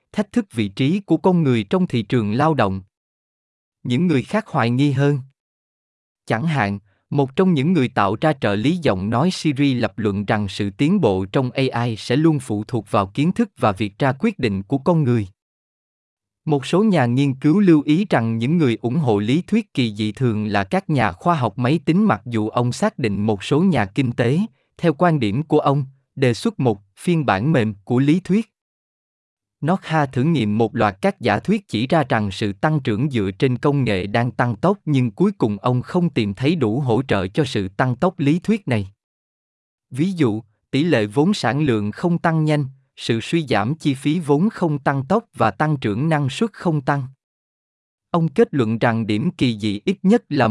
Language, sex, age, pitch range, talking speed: Vietnamese, male, 20-39, 115-165 Hz, 210 wpm